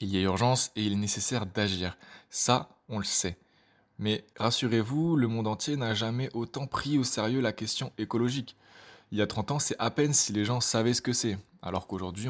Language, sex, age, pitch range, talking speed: French, male, 20-39, 100-125 Hz, 215 wpm